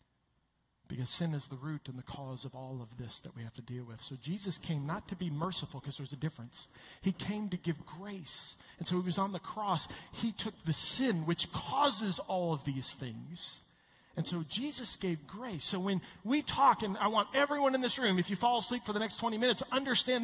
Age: 40-59